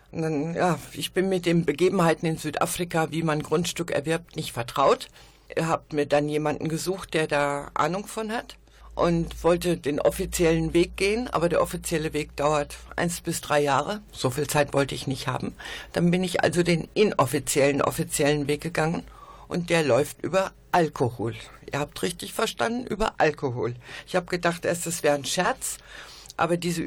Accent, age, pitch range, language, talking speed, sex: German, 60-79, 150-185 Hz, German, 170 wpm, female